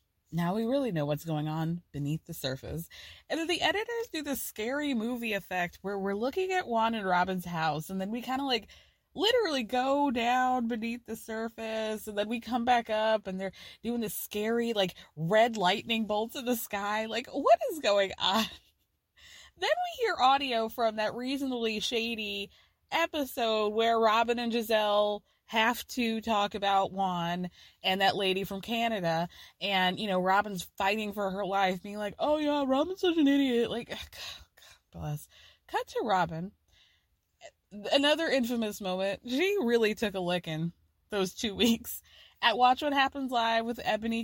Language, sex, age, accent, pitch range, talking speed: English, female, 20-39, American, 195-255 Hz, 170 wpm